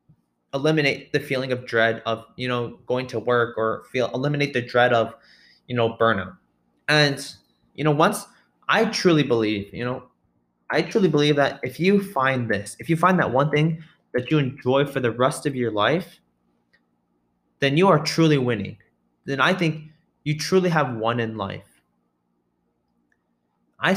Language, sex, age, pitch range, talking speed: English, male, 20-39, 115-155 Hz, 170 wpm